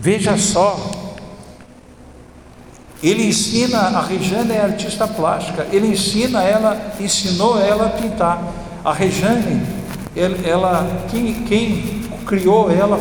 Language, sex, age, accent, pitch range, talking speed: Portuguese, male, 60-79, Brazilian, 155-200 Hz, 105 wpm